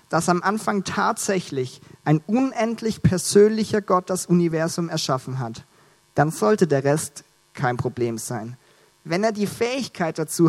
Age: 40-59